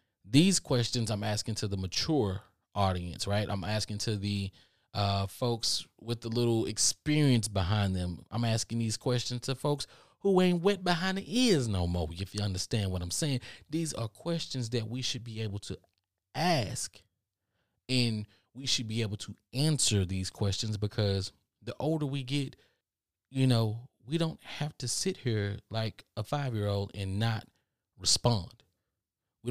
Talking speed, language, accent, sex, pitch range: 165 wpm, English, American, male, 100-125 Hz